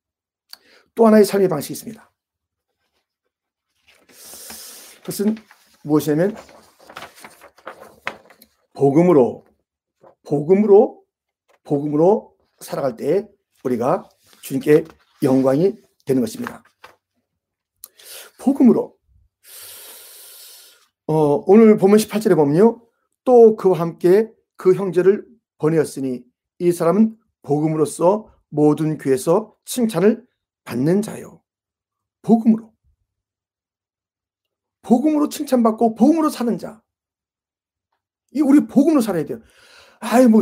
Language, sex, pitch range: Korean, male, 150-225 Hz